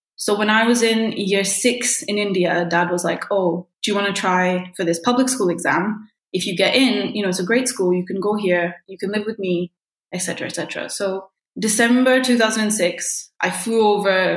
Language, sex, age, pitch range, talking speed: English, female, 20-39, 185-225 Hz, 215 wpm